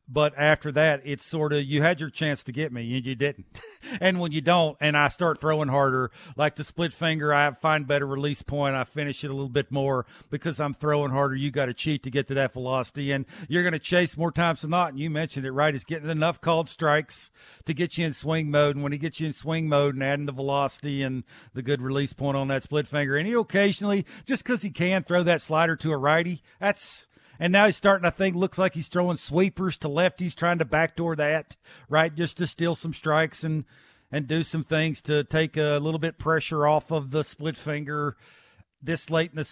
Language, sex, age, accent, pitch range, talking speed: English, male, 50-69, American, 145-175 Hz, 240 wpm